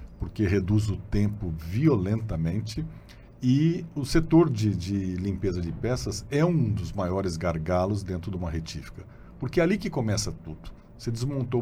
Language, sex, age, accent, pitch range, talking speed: Portuguese, male, 50-69, Brazilian, 100-140 Hz, 155 wpm